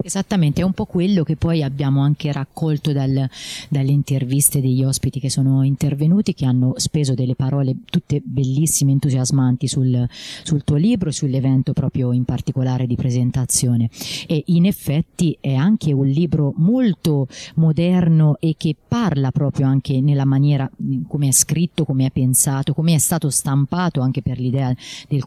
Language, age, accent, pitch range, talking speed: Italian, 30-49, native, 130-150 Hz, 160 wpm